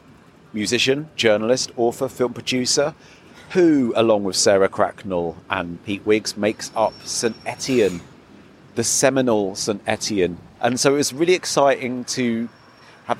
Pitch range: 105-130 Hz